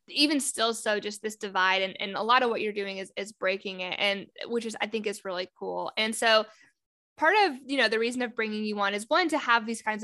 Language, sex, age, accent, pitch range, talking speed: English, female, 10-29, American, 200-230 Hz, 265 wpm